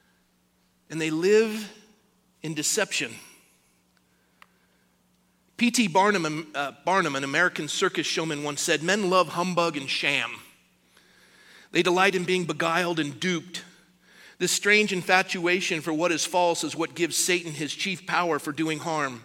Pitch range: 155-205 Hz